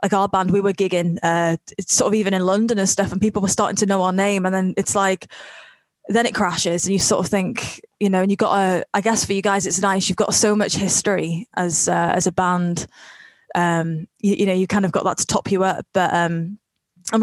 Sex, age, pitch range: female, 20-39, 180-210 Hz